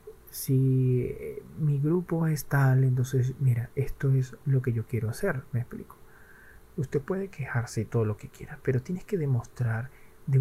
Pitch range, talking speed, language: 120-155 Hz, 160 wpm, Spanish